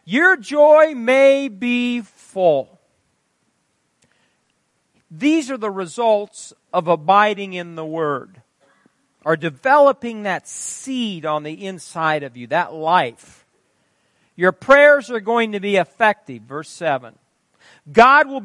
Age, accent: 50-69, American